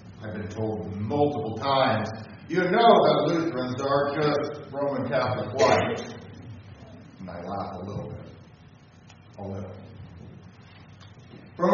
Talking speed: 110 wpm